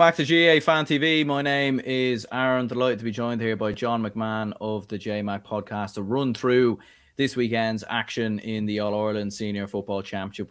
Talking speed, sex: 195 wpm, male